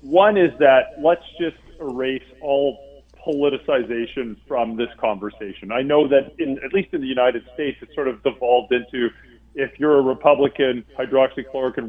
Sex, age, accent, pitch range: male, 40-59, American, 120-150 Hz